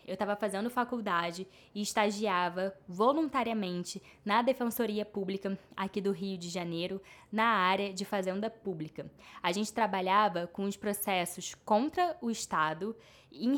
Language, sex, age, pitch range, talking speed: Portuguese, female, 10-29, 190-230 Hz, 135 wpm